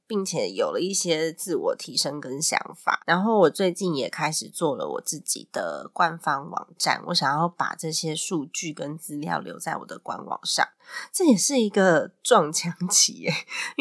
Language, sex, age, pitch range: Chinese, female, 20-39, 165-210 Hz